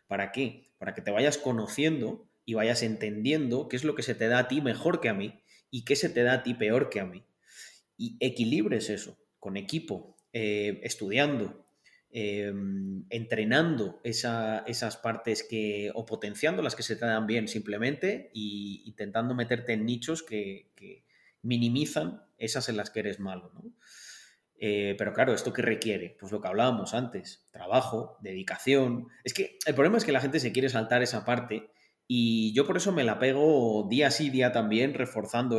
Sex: male